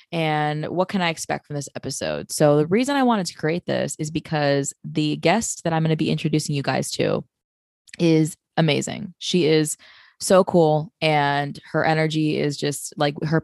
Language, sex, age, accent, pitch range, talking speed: English, female, 20-39, American, 150-175 Hz, 190 wpm